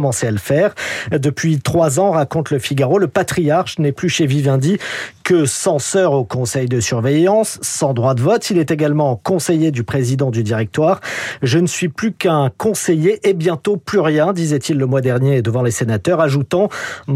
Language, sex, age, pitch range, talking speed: French, male, 40-59, 130-175 Hz, 190 wpm